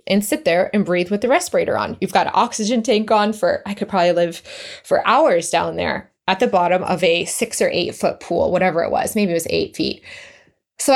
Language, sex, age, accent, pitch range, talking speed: English, female, 20-39, American, 180-235 Hz, 235 wpm